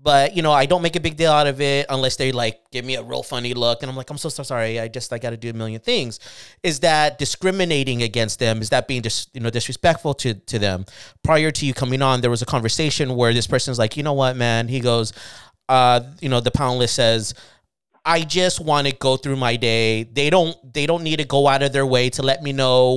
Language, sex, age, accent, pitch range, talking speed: English, male, 30-49, American, 120-150 Hz, 265 wpm